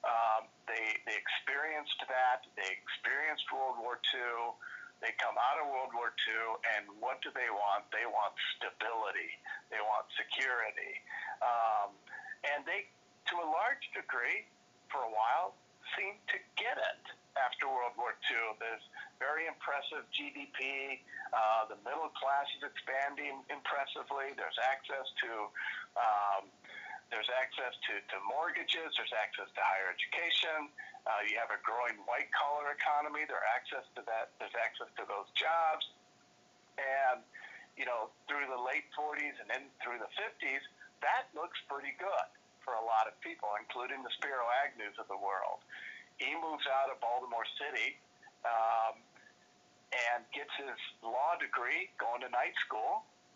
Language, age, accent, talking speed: English, 50-69, American, 145 wpm